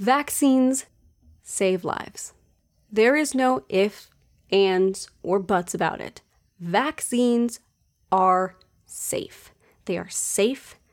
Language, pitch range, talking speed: English, 175-210 Hz, 100 wpm